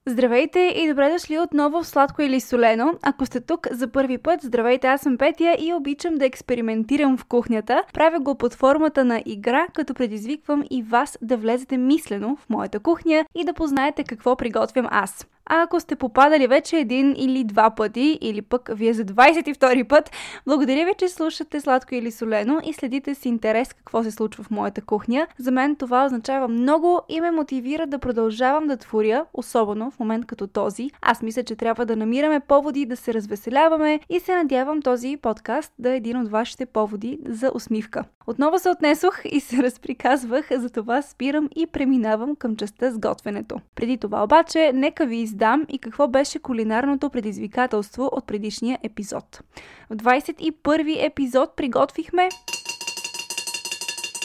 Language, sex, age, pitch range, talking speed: Bulgarian, female, 10-29, 230-300 Hz, 165 wpm